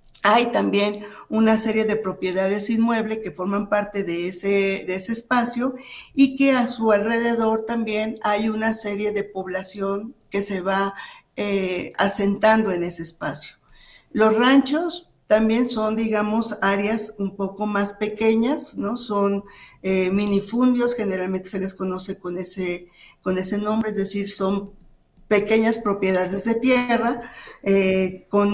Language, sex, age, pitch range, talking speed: Spanish, female, 50-69, 190-225 Hz, 140 wpm